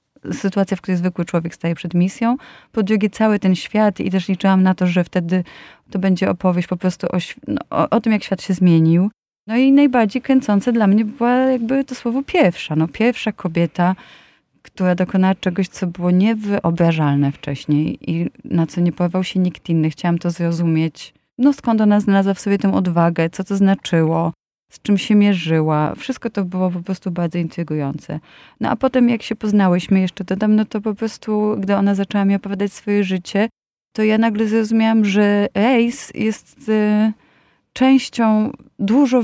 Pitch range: 175-215 Hz